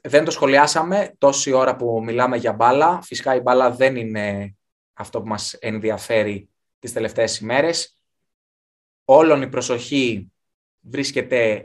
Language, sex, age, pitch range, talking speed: Greek, male, 20-39, 105-120 Hz, 130 wpm